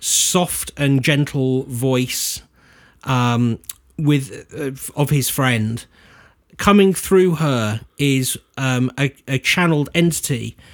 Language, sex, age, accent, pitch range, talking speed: English, male, 30-49, British, 125-155 Hz, 105 wpm